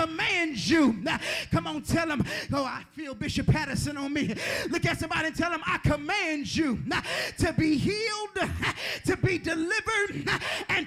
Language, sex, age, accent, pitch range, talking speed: English, male, 30-49, American, 280-345 Hz, 160 wpm